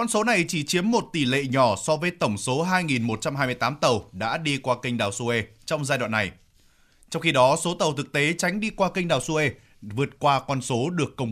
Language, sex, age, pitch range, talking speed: Vietnamese, male, 20-39, 120-165 Hz, 235 wpm